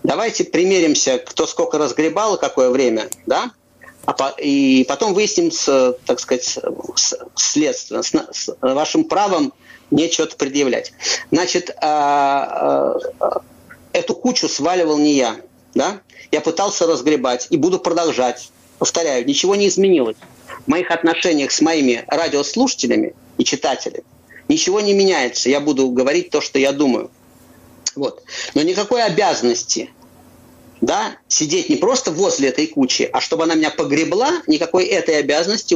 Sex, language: male, Russian